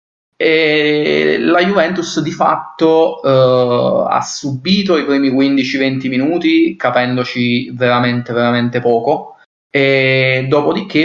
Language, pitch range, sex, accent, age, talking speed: Italian, 120-140 Hz, male, native, 20-39, 100 wpm